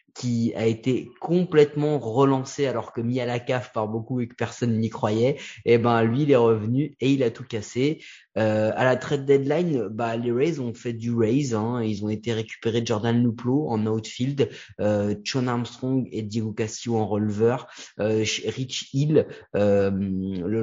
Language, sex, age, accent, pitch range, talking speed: French, male, 30-49, French, 110-135 Hz, 190 wpm